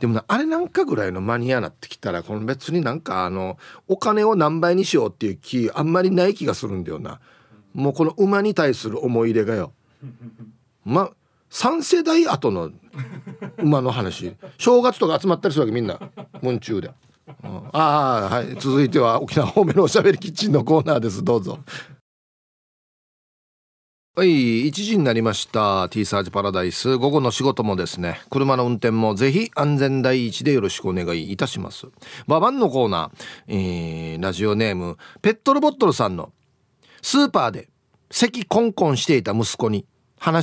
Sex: male